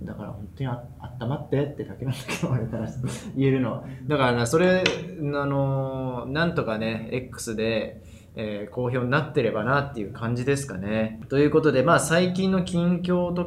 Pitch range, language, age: 115-155 Hz, Japanese, 20-39